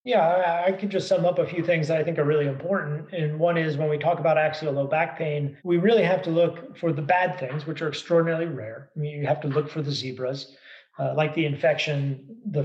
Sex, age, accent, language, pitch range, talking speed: male, 30-49, American, English, 140-165 Hz, 255 wpm